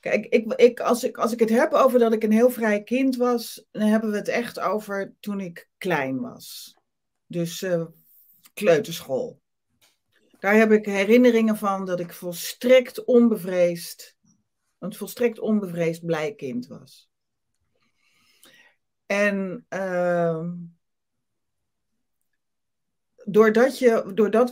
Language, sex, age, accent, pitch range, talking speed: Dutch, female, 40-59, Dutch, 170-225 Hz, 115 wpm